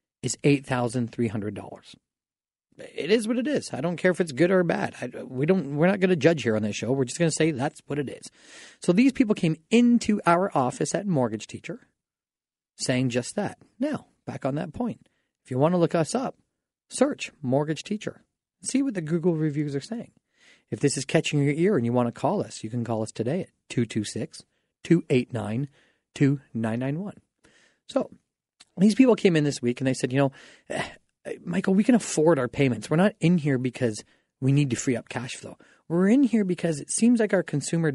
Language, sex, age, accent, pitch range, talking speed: English, male, 40-59, American, 130-190 Hz, 205 wpm